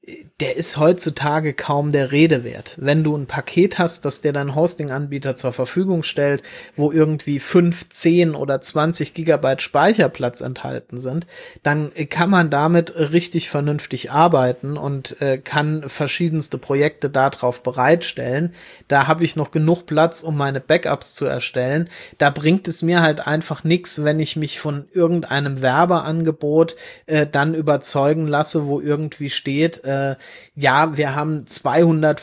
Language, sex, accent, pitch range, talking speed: German, male, German, 140-165 Hz, 145 wpm